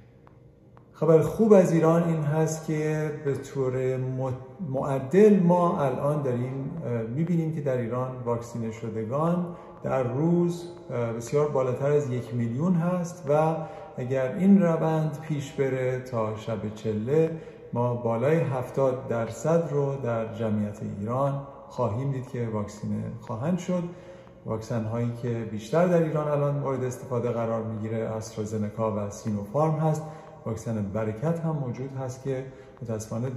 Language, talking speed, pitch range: Persian, 130 wpm, 115-155 Hz